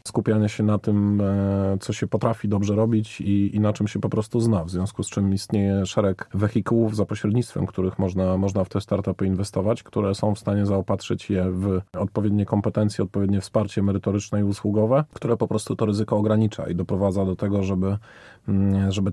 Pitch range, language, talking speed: 100-110 Hz, Polish, 185 wpm